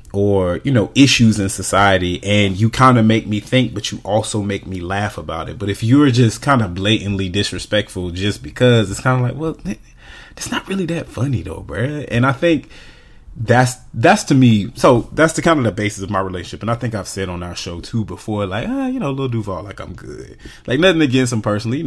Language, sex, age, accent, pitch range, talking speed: English, male, 30-49, American, 95-120 Hz, 235 wpm